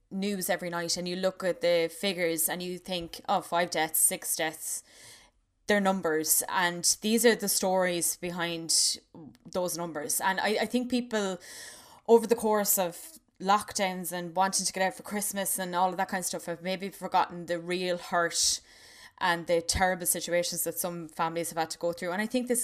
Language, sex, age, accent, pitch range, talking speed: English, female, 20-39, Irish, 170-195 Hz, 195 wpm